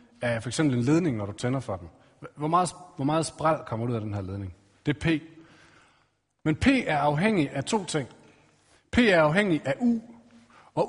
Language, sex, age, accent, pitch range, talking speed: Danish, male, 30-49, native, 120-160 Hz, 200 wpm